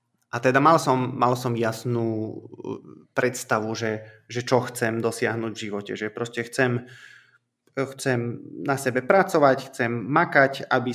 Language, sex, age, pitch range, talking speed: Slovak, male, 20-39, 115-130 Hz, 135 wpm